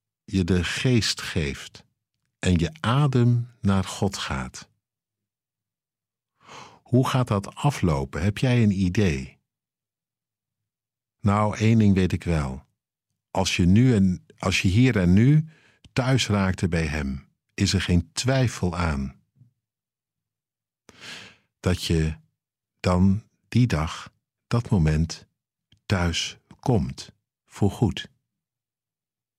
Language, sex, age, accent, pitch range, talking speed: Dutch, male, 60-79, Dutch, 90-120 Hz, 105 wpm